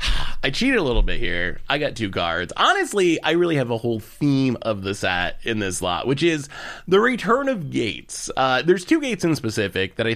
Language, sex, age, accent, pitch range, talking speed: English, male, 30-49, American, 110-165 Hz, 220 wpm